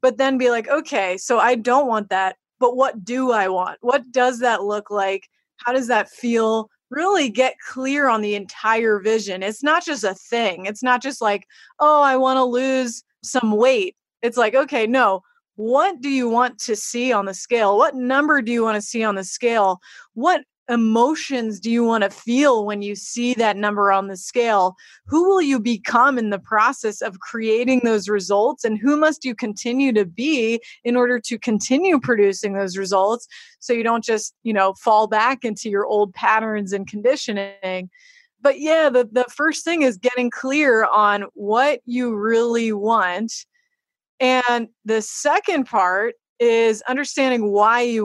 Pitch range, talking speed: 210-260 Hz, 180 wpm